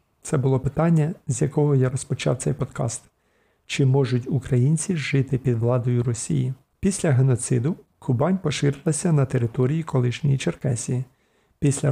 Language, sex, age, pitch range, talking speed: Ukrainian, male, 50-69, 125-150 Hz, 125 wpm